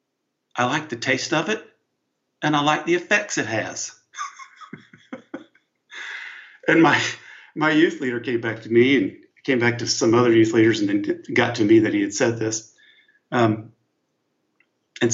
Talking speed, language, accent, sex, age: 165 wpm, English, American, male, 50-69